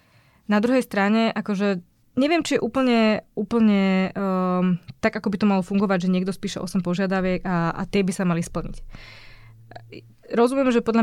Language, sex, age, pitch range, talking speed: Slovak, female, 20-39, 185-215 Hz, 170 wpm